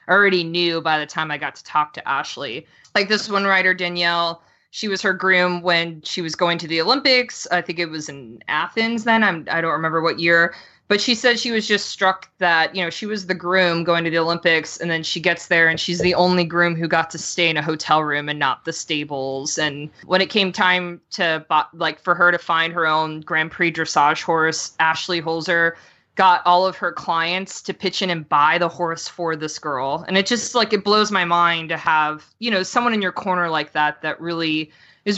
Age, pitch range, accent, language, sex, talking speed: 20-39, 165-190 Hz, American, English, female, 230 wpm